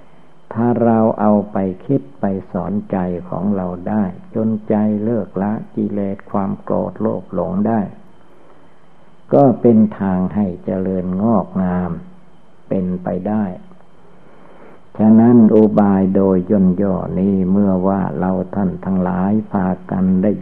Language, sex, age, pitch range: Thai, male, 60-79, 95-105 Hz